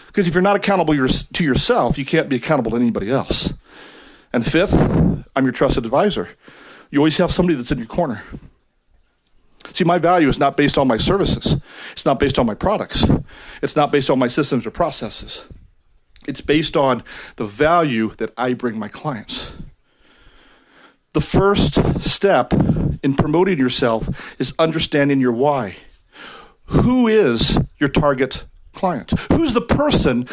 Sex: male